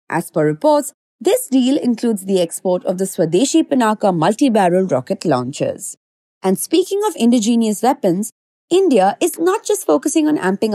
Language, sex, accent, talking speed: English, female, Indian, 150 wpm